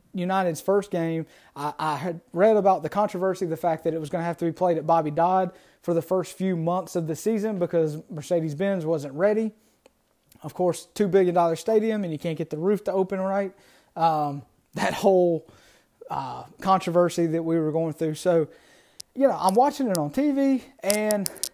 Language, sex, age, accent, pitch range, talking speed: English, male, 30-49, American, 160-195 Hz, 190 wpm